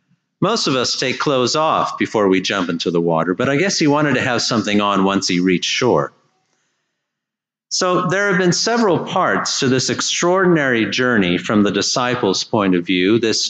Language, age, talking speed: English, 50-69, 185 wpm